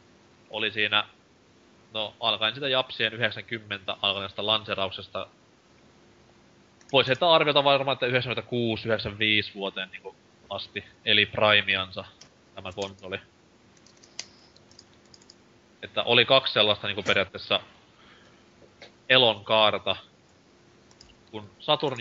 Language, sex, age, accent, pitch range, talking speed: Finnish, male, 20-39, native, 100-115 Hz, 95 wpm